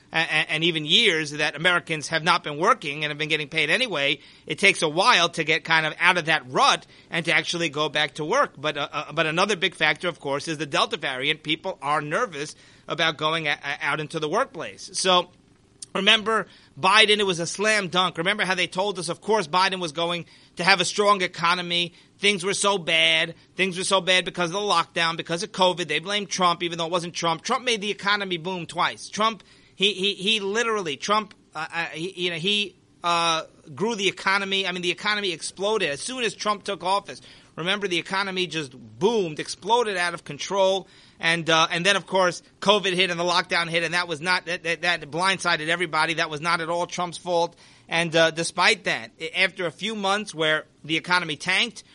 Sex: male